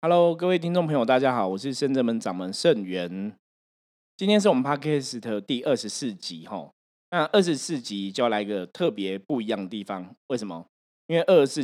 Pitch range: 105-145 Hz